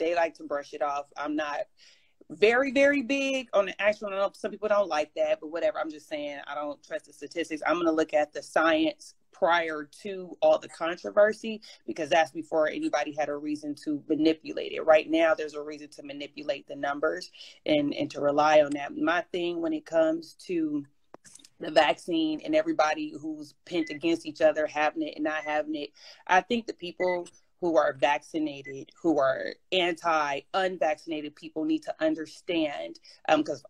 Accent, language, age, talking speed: American, English, 30-49, 185 wpm